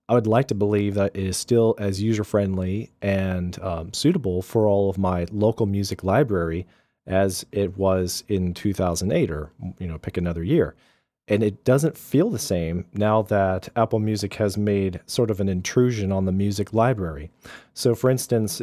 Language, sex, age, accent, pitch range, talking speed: English, male, 40-59, American, 95-120 Hz, 170 wpm